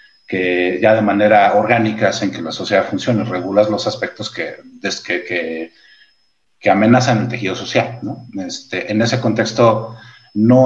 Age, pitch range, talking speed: 30-49, 105-125 Hz, 150 wpm